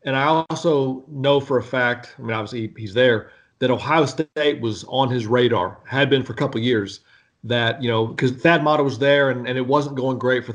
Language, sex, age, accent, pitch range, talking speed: English, male, 40-59, American, 120-145 Hz, 235 wpm